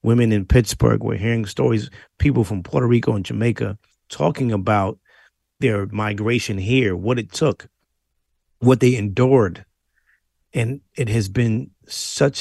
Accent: American